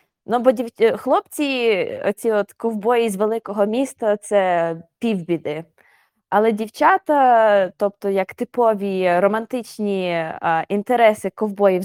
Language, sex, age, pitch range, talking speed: Ukrainian, female, 20-39, 195-250 Hz, 90 wpm